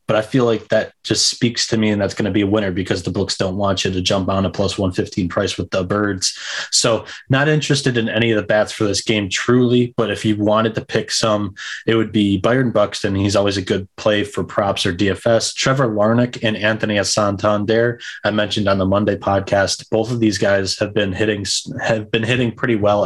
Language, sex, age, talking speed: English, male, 20-39, 235 wpm